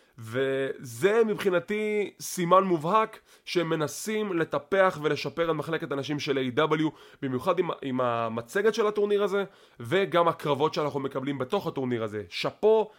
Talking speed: 115 wpm